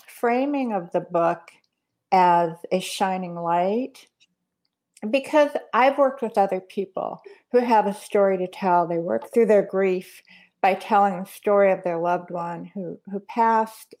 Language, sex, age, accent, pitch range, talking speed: English, female, 50-69, American, 185-240 Hz, 155 wpm